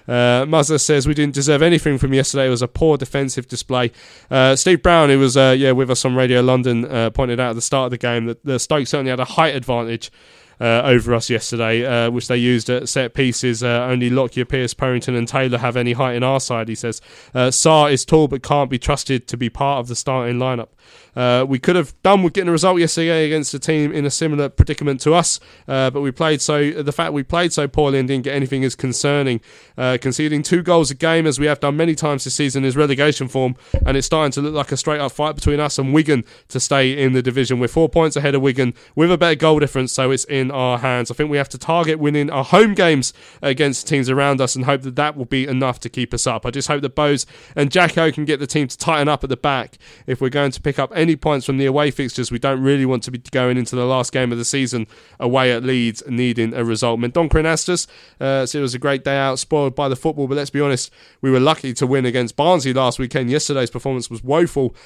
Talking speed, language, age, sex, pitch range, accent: 255 wpm, English, 20-39, male, 125-145 Hz, British